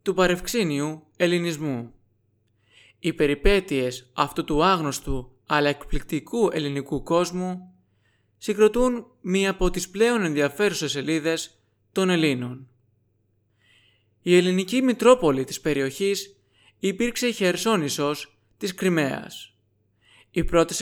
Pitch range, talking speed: 125-190 Hz, 95 wpm